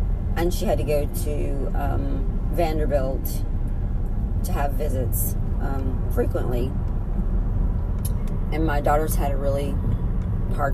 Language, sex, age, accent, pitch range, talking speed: English, female, 40-59, American, 95-115 Hz, 110 wpm